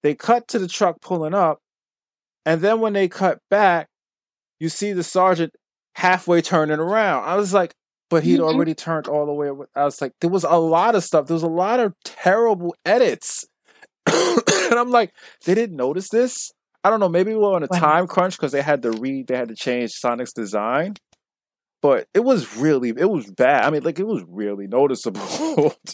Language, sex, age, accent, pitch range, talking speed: English, male, 20-39, American, 120-185 Hz, 205 wpm